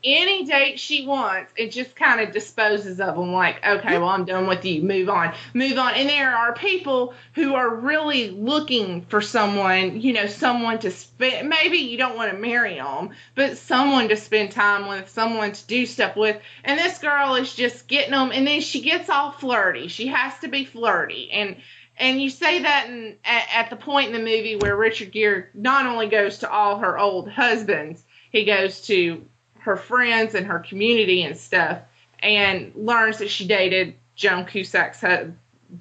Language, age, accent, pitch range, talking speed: English, 30-49, American, 195-255 Hz, 190 wpm